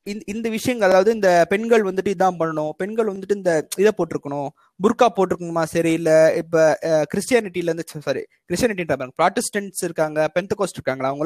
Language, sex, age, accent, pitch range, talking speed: Tamil, male, 20-39, native, 185-275 Hz, 150 wpm